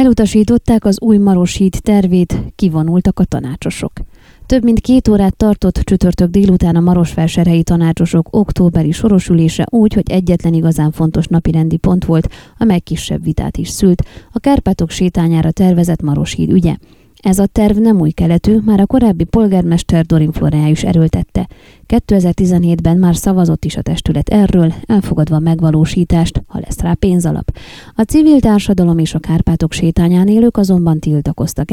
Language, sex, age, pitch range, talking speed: Hungarian, female, 20-39, 165-200 Hz, 145 wpm